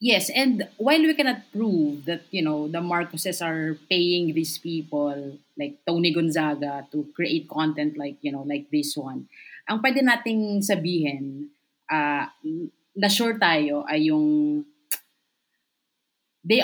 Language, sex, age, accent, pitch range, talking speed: English, female, 20-39, Filipino, 155-220 Hz, 135 wpm